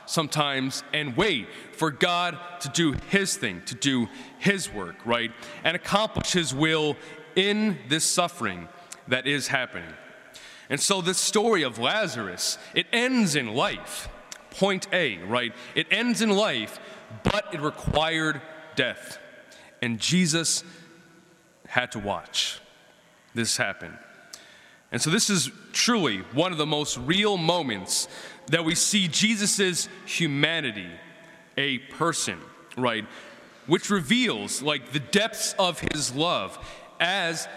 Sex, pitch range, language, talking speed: male, 140-185 Hz, English, 130 wpm